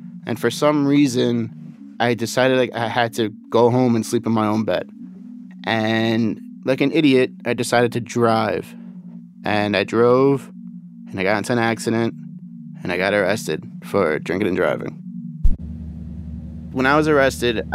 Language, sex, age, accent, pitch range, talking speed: English, male, 30-49, American, 80-120 Hz, 160 wpm